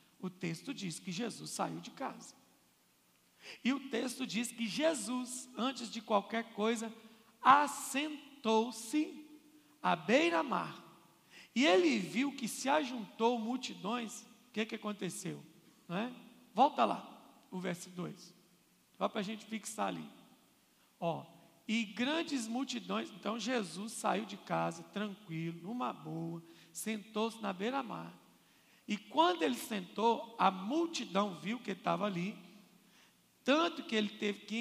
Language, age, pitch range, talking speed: Portuguese, 50-69, 195-250 Hz, 135 wpm